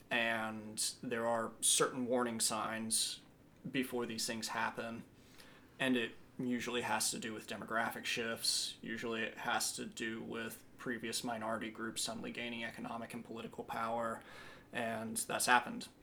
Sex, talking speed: male, 140 wpm